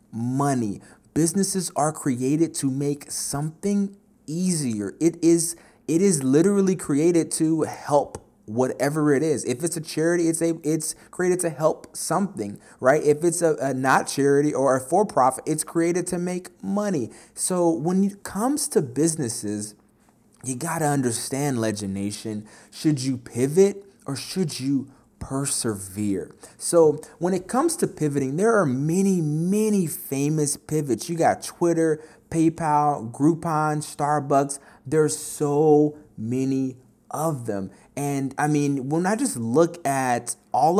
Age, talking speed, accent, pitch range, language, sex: 30-49, 140 wpm, American, 125-170 Hz, English, male